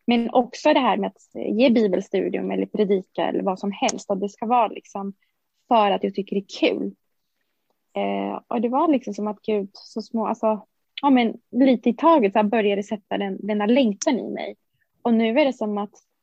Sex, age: female, 20-39